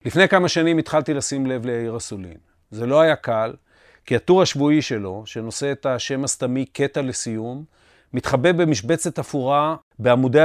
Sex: male